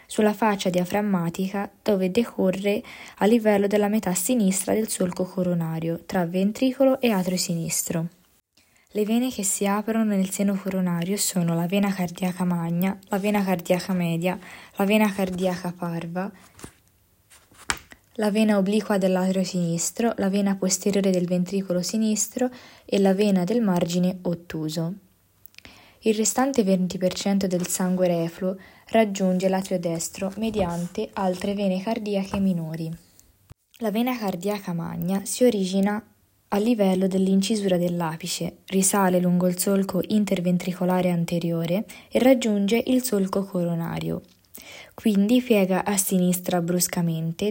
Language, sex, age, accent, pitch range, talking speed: Italian, female, 20-39, native, 175-205 Hz, 120 wpm